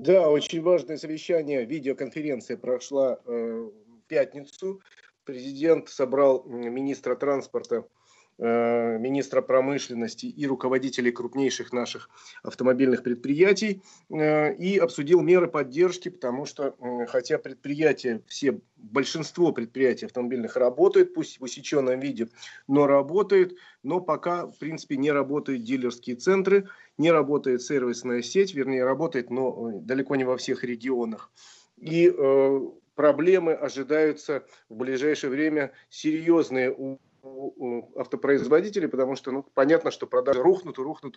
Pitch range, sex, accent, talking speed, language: 130-170 Hz, male, native, 115 wpm, Russian